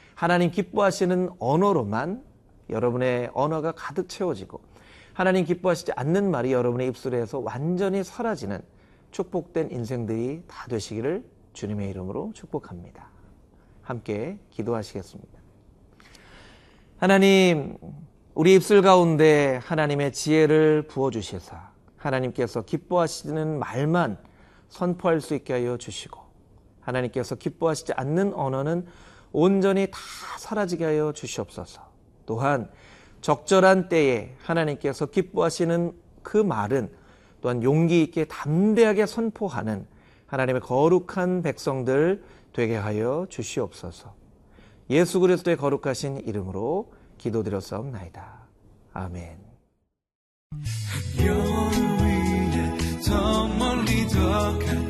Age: 40-59